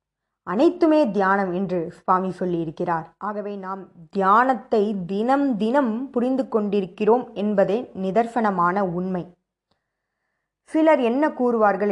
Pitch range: 185-240 Hz